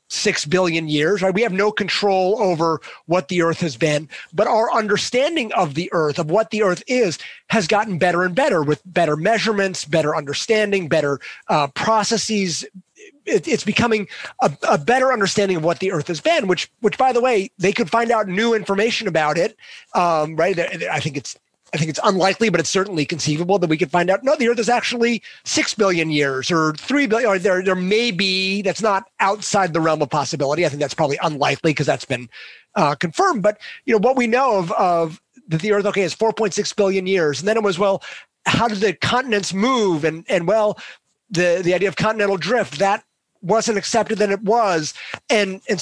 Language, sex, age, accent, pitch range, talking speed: English, male, 30-49, American, 170-220 Hz, 205 wpm